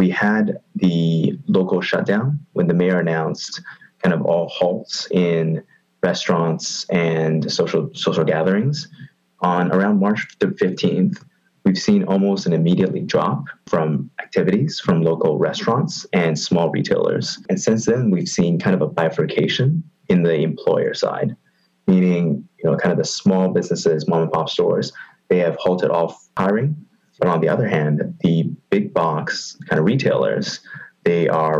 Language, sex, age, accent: English, male, 30-49, American